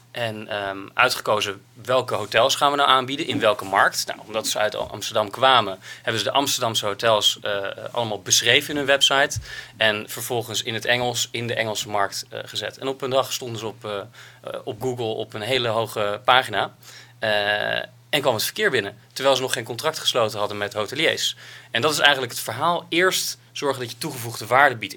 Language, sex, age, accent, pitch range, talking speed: Dutch, male, 30-49, Dutch, 110-135 Hz, 200 wpm